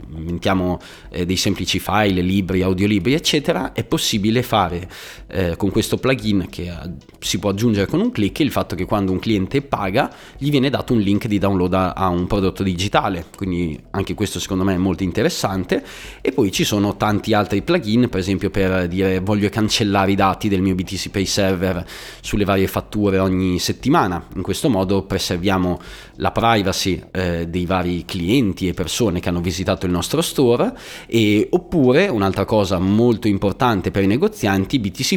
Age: 30-49